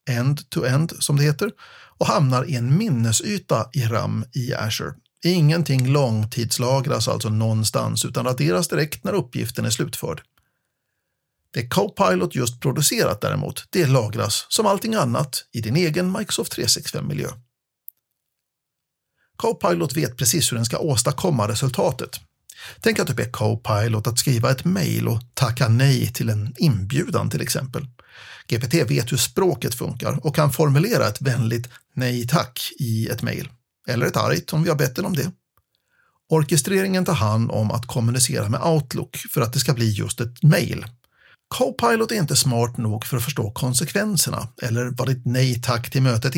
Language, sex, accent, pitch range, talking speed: Swedish, male, native, 120-160 Hz, 155 wpm